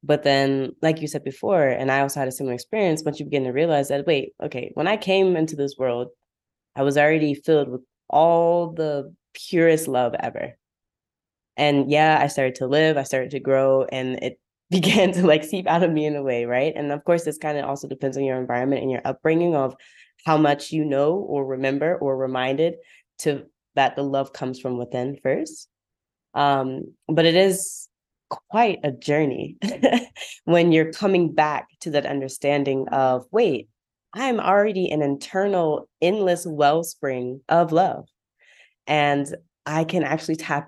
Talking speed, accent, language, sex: 175 wpm, American, English, female